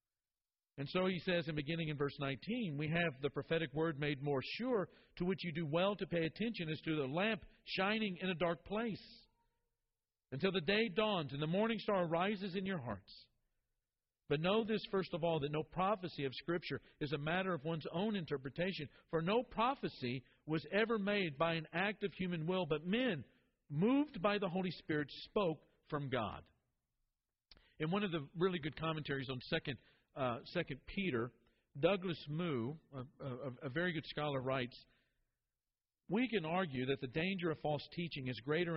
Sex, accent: male, American